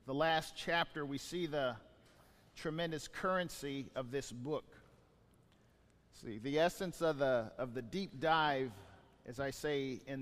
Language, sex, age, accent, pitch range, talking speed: English, male, 40-59, American, 140-195 Hz, 145 wpm